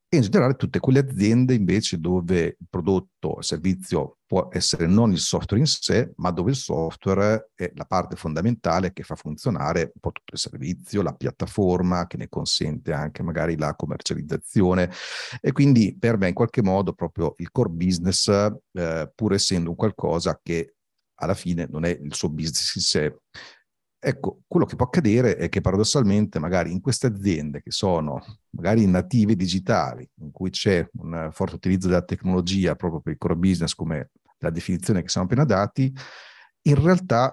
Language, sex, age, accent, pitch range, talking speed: Italian, male, 40-59, native, 85-110 Hz, 175 wpm